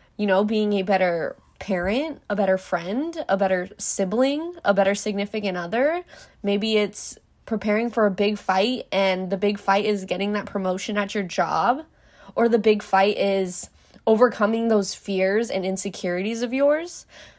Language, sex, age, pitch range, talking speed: English, female, 20-39, 195-230 Hz, 160 wpm